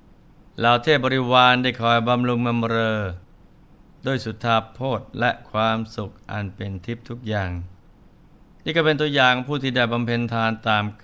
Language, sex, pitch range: Thai, male, 110-130 Hz